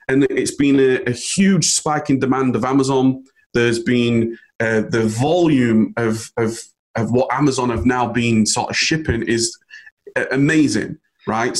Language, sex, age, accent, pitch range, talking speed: English, male, 30-49, British, 120-150 Hz, 155 wpm